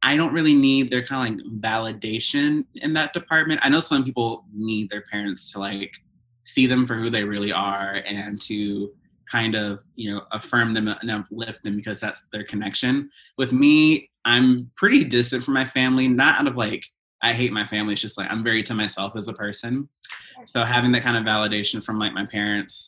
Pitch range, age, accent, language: 105-120 Hz, 20-39, American, English